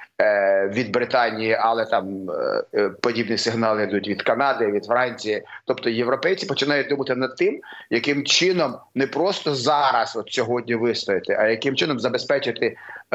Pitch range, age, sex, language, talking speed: 115-145 Hz, 30-49, male, Ukrainian, 130 wpm